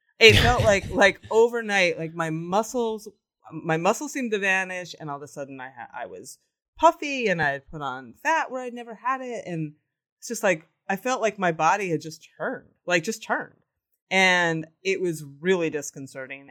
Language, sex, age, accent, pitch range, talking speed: English, female, 30-49, American, 150-215 Hz, 195 wpm